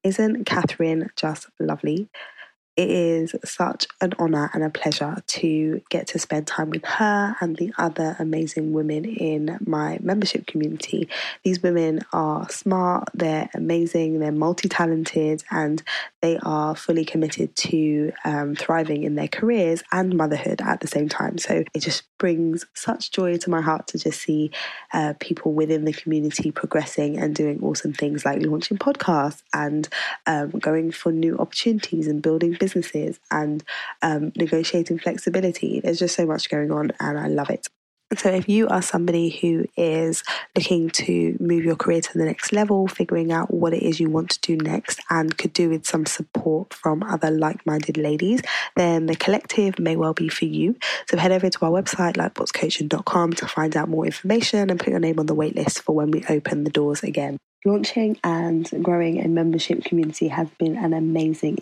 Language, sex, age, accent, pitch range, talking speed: English, female, 20-39, British, 155-180 Hz, 175 wpm